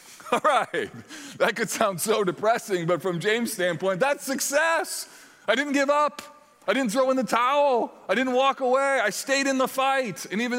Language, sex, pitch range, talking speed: English, male, 135-210 Hz, 195 wpm